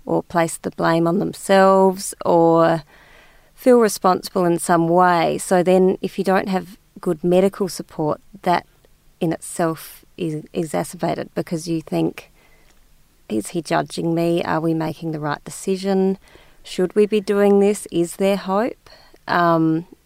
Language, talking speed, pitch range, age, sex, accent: English, 145 wpm, 160-190 Hz, 30-49, female, Australian